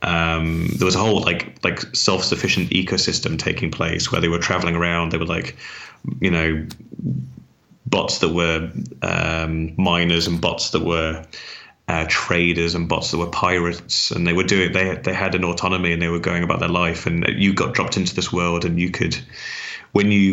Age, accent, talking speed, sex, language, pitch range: 30-49, British, 195 wpm, male, English, 85-95 Hz